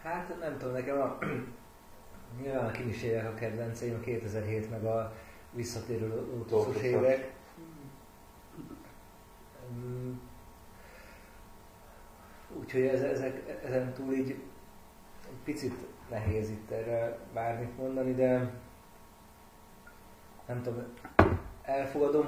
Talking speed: 85 wpm